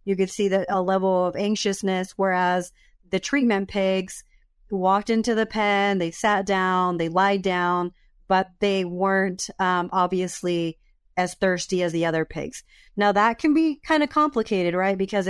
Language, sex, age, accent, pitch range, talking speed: English, female, 30-49, American, 180-205 Hz, 165 wpm